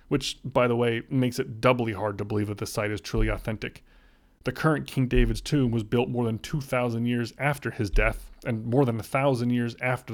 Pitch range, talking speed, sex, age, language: 115-155 Hz, 215 wpm, male, 30-49, English